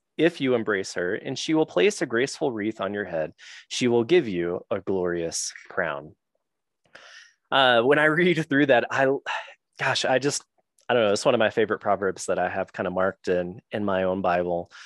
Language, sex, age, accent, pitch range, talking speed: English, male, 20-39, American, 90-120 Hz, 205 wpm